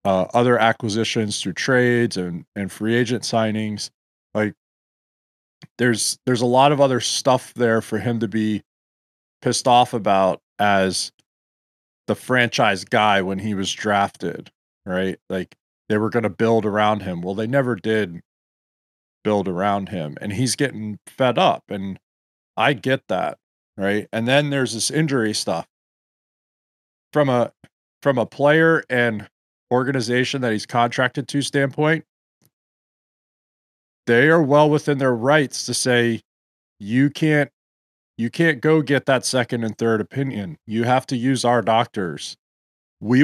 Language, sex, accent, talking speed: English, male, American, 145 wpm